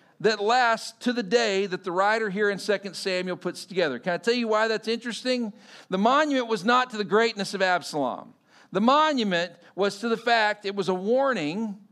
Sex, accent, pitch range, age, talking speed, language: male, American, 165-230 Hz, 50-69, 200 wpm, English